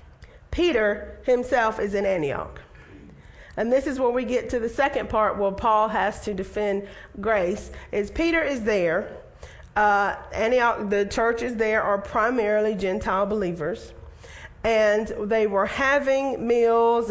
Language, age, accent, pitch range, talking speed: English, 40-59, American, 205-240 Hz, 135 wpm